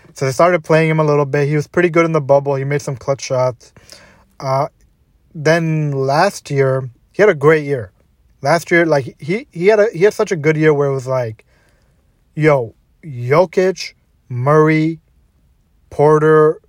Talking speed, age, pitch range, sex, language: 180 wpm, 20-39, 130-155 Hz, male, English